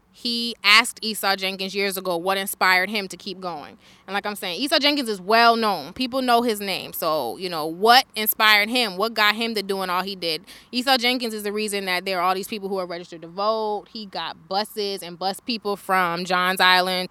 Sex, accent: female, American